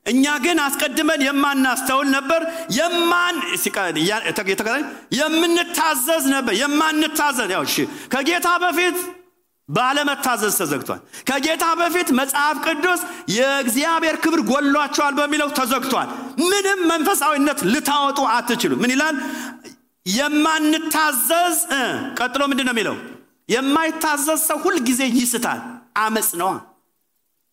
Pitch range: 245-335 Hz